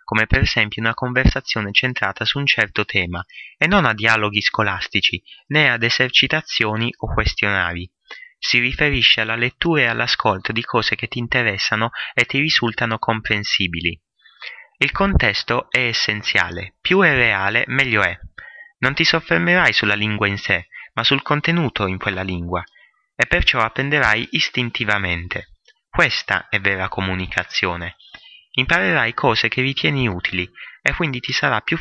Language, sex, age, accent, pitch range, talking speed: Italian, male, 30-49, native, 100-135 Hz, 140 wpm